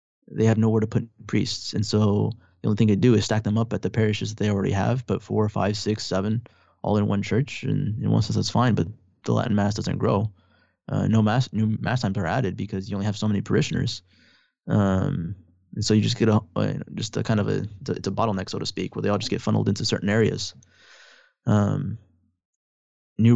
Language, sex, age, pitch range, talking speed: English, male, 20-39, 100-110 Hz, 230 wpm